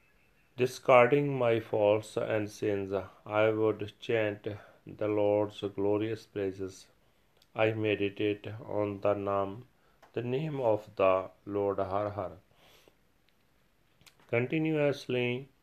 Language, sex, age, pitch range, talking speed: Punjabi, male, 40-59, 100-120 Hz, 95 wpm